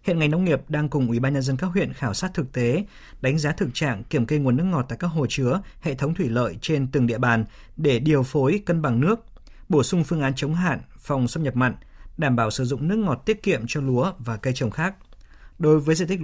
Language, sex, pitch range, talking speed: Vietnamese, male, 125-155 Hz, 260 wpm